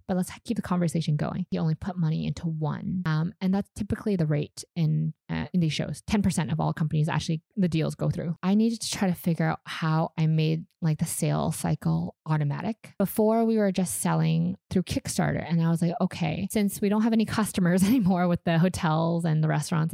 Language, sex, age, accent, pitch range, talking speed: English, female, 20-39, American, 160-190 Hz, 215 wpm